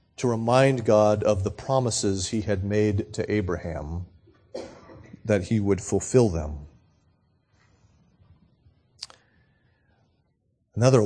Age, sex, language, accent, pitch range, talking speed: 40-59, male, English, American, 100-125 Hz, 90 wpm